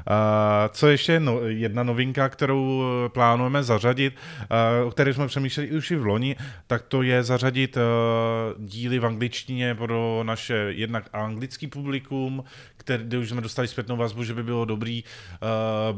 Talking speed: 160 wpm